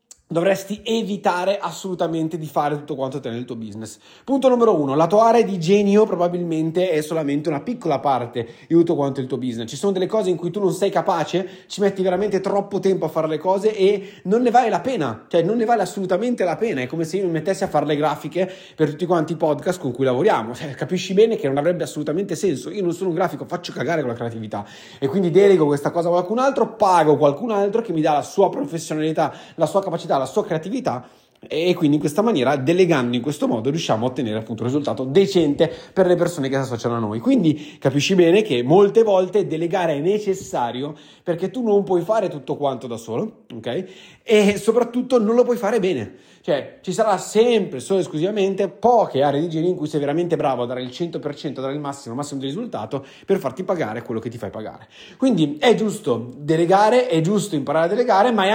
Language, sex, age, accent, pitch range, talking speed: Italian, male, 30-49, native, 145-195 Hz, 220 wpm